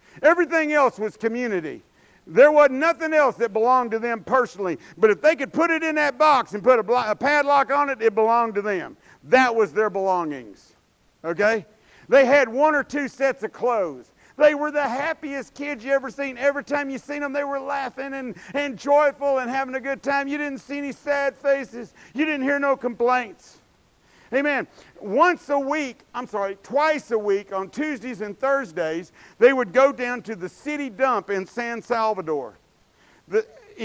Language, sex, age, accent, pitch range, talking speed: English, male, 50-69, American, 225-285 Hz, 190 wpm